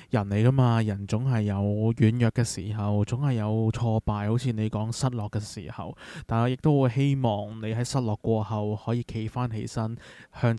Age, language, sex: 20-39, Chinese, male